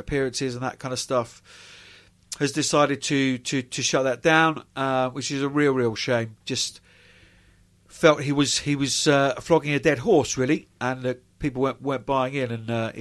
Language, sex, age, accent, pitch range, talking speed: English, male, 40-59, British, 115-150 Hz, 200 wpm